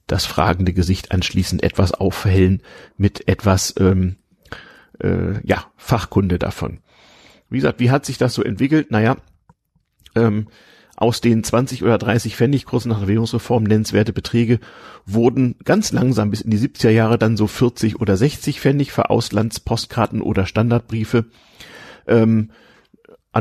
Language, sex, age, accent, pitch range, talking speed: German, male, 40-59, German, 95-115 Hz, 140 wpm